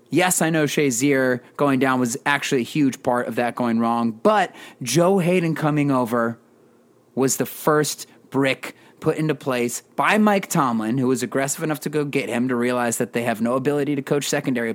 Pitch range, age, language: 130-160 Hz, 30-49, English